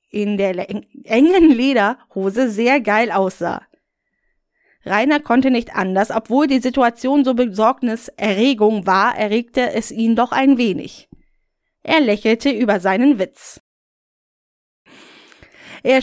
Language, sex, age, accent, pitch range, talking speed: German, female, 20-39, German, 215-270 Hz, 110 wpm